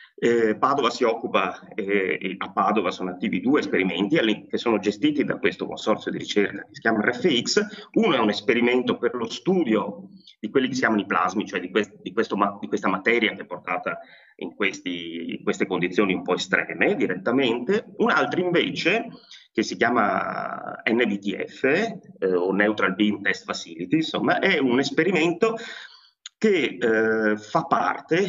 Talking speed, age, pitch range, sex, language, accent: 165 wpm, 30-49, 105-155 Hz, male, Italian, native